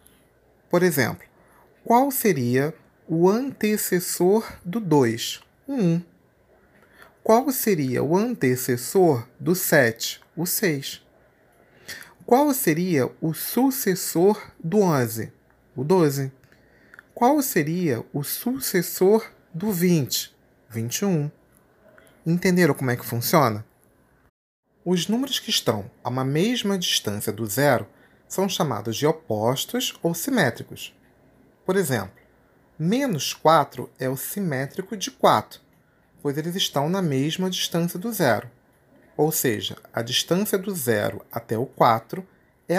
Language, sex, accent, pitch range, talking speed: Portuguese, male, Brazilian, 135-195 Hz, 115 wpm